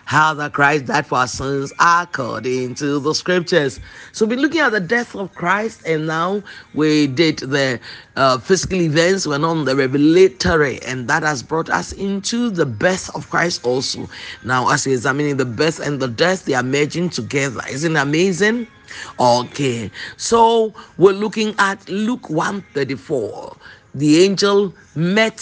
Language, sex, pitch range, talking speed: English, male, 150-205 Hz, 160 wpm